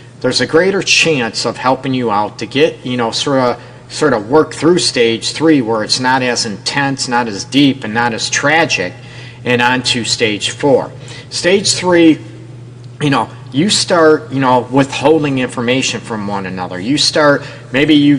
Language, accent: English, American